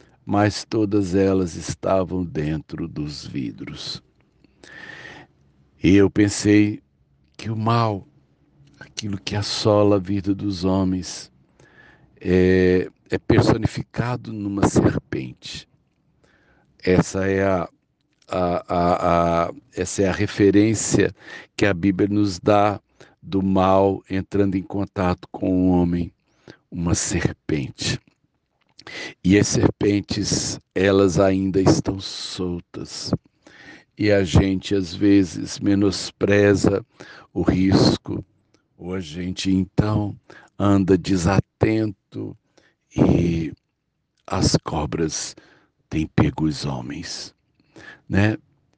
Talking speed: 90 wpm